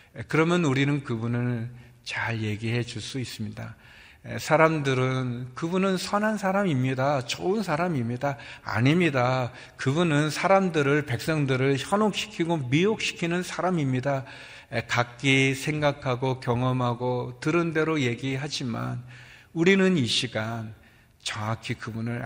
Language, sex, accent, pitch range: Korean, male, native, 115-140 Hz